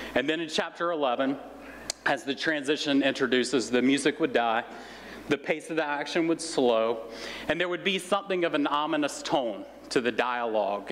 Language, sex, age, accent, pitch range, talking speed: English, male, 40-59, American, 125-165 Hz, 175 wpm